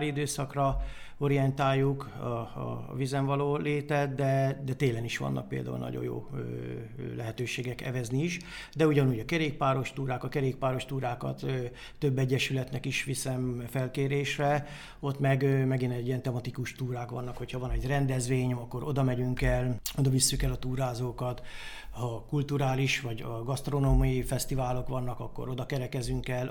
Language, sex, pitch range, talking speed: Hungarian, male, 125-140 Hz, 145 wpm